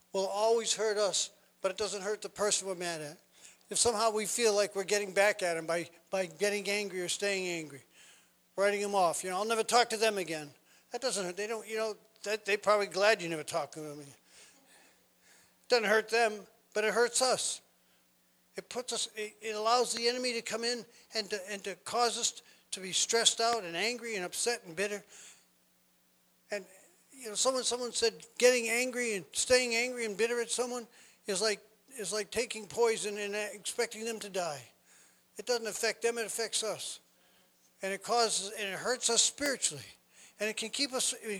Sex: male